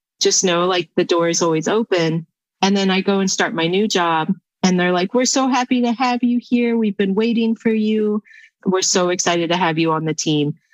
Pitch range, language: 160-200 Hz, English